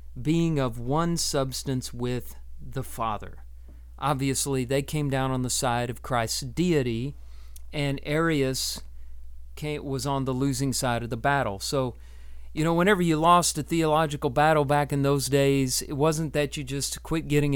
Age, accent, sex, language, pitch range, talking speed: 40-59, American, male, English, 115-145 Hz, 160 wpm